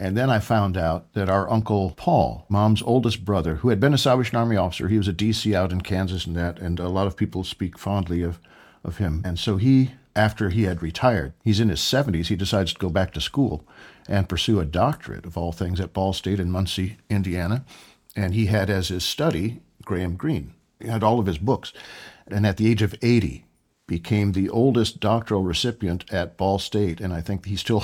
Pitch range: 90-110 Hz